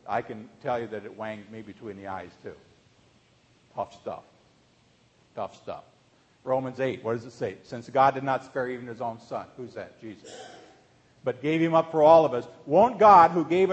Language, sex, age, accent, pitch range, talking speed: English, male, 50-69, American, 135-225 Hz, 200 wpm